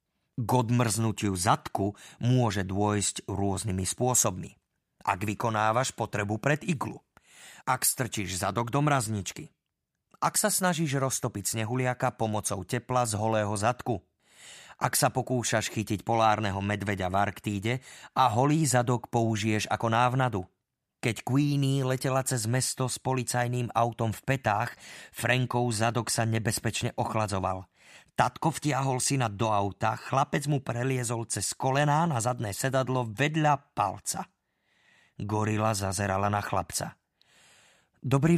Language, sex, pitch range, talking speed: Slovak, male, 105-130 Hz, 120 wpm